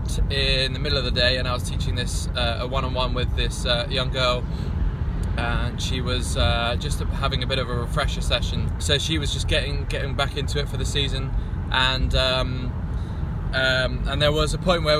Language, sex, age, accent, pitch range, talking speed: English, male, 20-39, British, 85-130 Hz, 210 wpm